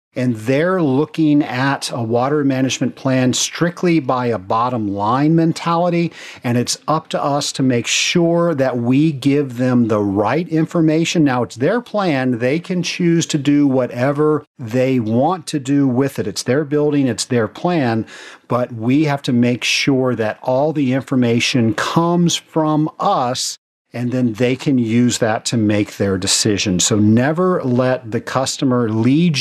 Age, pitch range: 50-69, 120-160 Hz